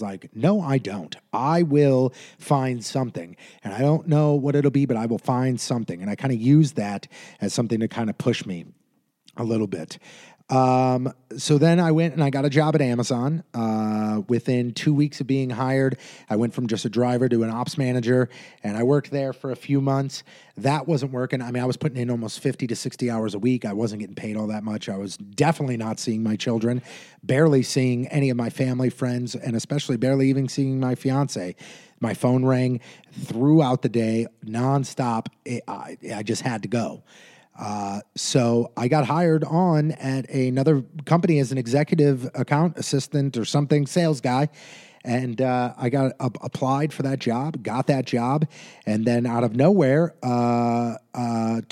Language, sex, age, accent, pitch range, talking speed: English, male, 30-49, American, 120-145 Hz, 195 wpm